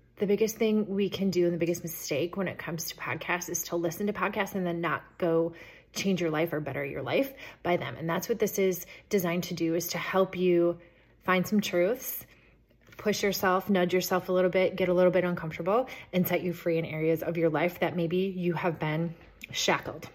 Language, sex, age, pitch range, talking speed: English, female, 30-49, 170-195 Hz, 225 wpm